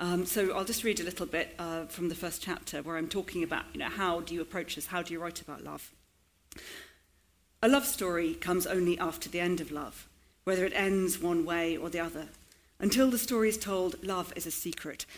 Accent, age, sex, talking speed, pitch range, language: British, 50-69, female, 225 wpm, 160-185 Hz, English